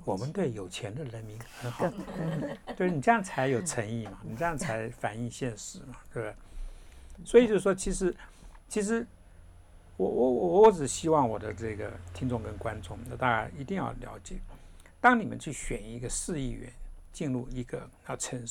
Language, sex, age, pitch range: Chinese, male, 60-79, 115-170 Hz